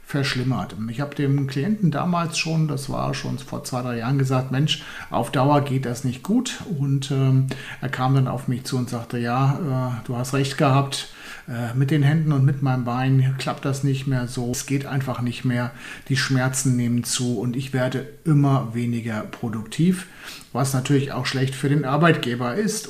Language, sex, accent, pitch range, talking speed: German, male, German, 120-145 Hz, 195 wpm